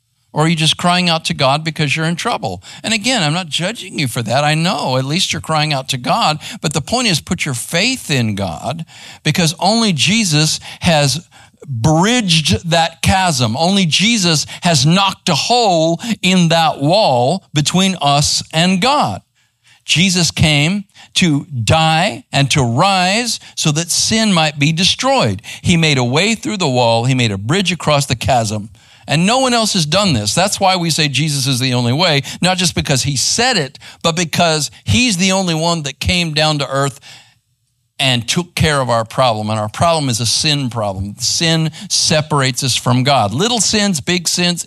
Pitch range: 130-175 Hz